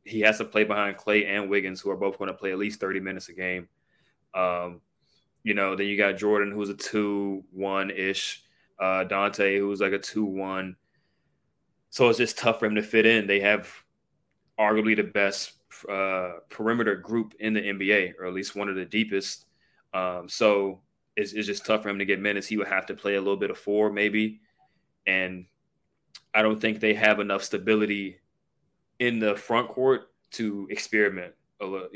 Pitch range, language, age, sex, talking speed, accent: 95-105 Hz, English, 20-39, male, 195 wpm, American